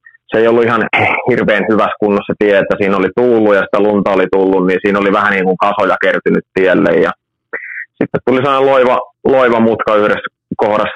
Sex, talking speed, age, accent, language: male, 185 wpm, 20-39, native, Finnish